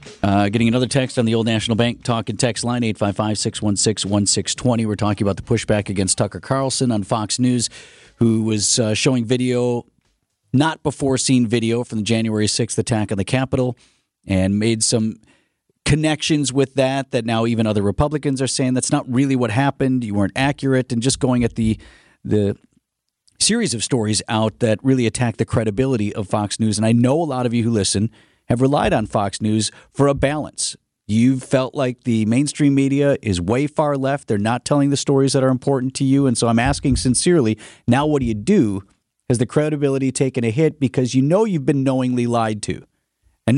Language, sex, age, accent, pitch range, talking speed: English, male, 40-59, American, 115-140 Hz, 205 wpm